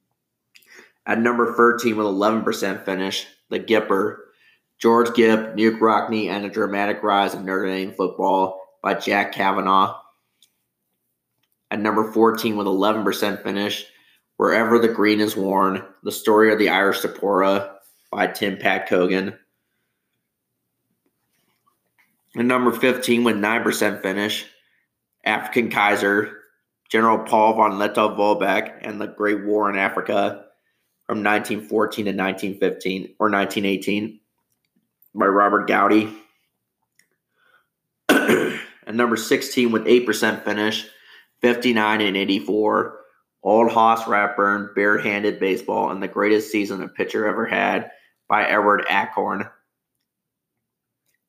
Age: 30-49